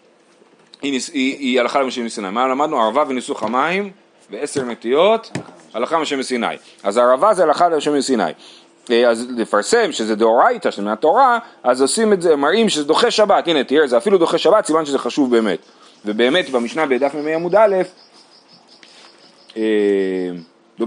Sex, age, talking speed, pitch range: male, 30-49, 160 wpm, 125-170 Hz